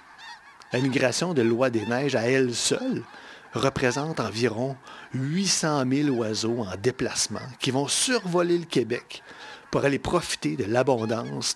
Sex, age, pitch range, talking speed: male, 50-69, 120-170 Hz, 135 wpm